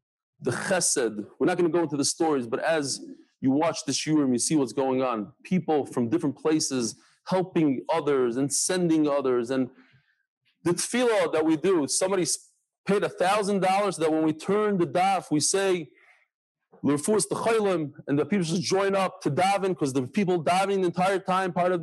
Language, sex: English, male